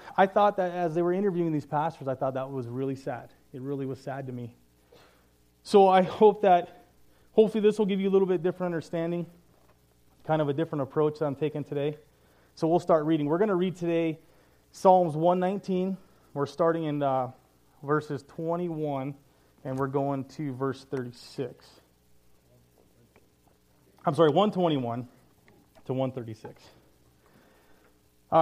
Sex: male